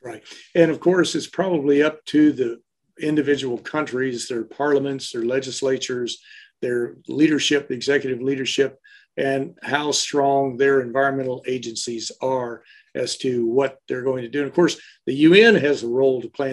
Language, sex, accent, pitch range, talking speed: English, male, American, 135-175 Hz, 155 wpm